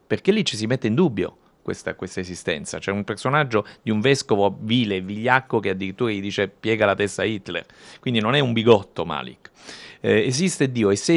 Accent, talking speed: native, 205 wpm